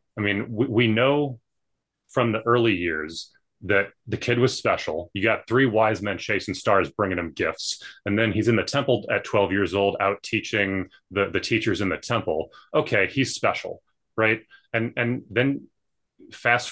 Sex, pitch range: male, 100-130 Hz